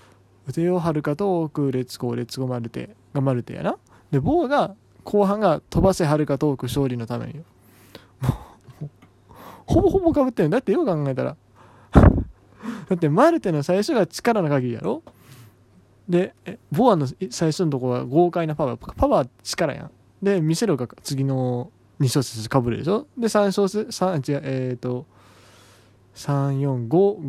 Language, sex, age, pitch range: Japanese, male, 20-39, 125-175 Hz